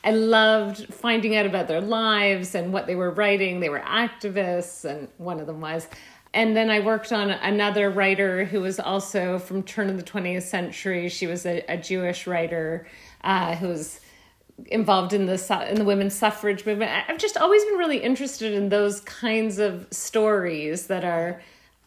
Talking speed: 180 wpm